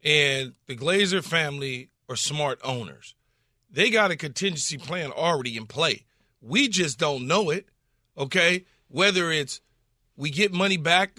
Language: English